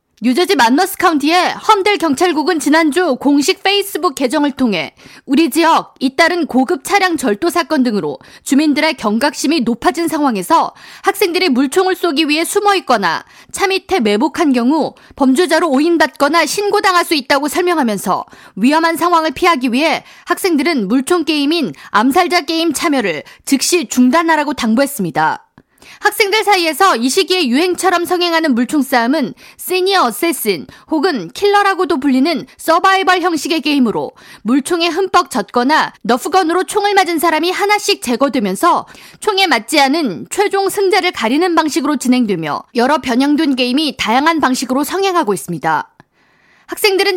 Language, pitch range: Korean, 265-360 Hz